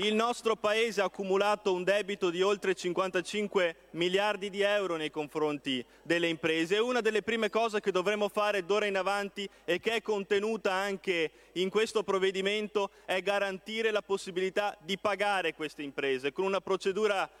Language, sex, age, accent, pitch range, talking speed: Italian, male, 30-49, native, 190-215 Hz, 160 wpm